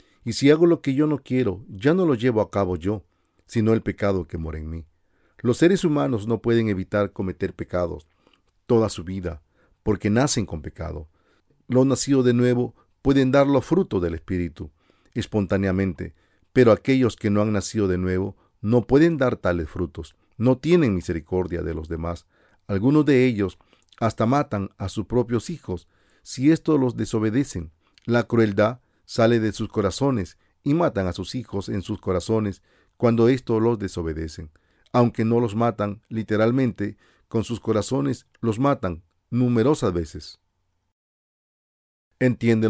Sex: male